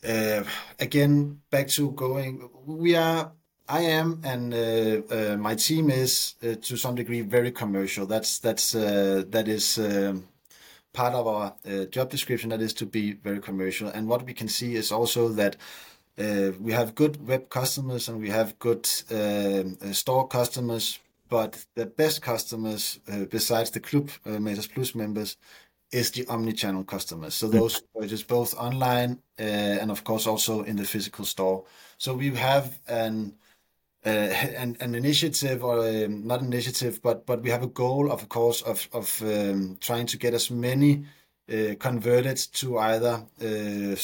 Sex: male